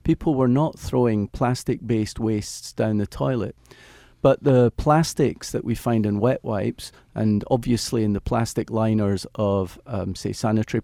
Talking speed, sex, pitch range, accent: 160 wpm, male, 105-125 Hz, British